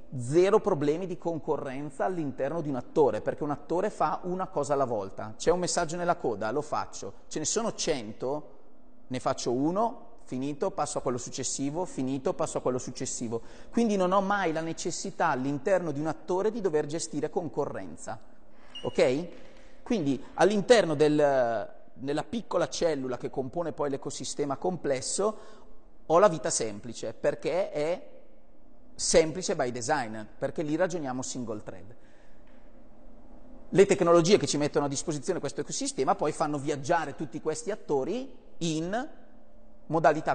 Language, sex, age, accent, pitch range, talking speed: Italian, male, 30-49, native, 140-190 Hz, 145 wpm